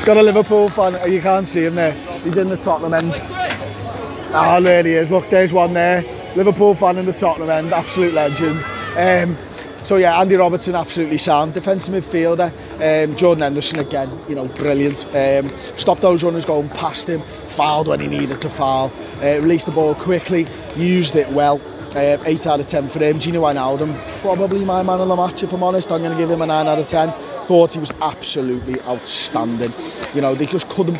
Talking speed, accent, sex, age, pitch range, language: 205 wpm, British, male, 30-49, 130-170 Hz, English